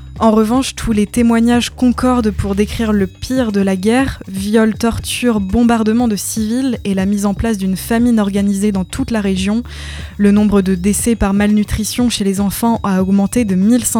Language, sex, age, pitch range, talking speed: French, female, 20-39, 200-230 Hz, 180 wpm